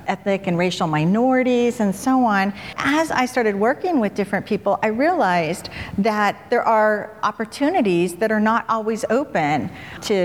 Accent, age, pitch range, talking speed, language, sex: American, 50-69, 185-245 Hz, 150 wpm, English, female